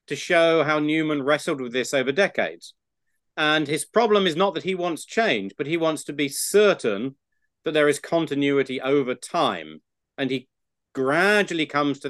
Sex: male